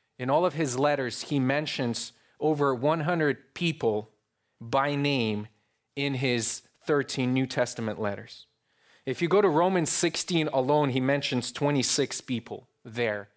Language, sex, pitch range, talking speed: English, male, 130-165 Hz, 135 wpm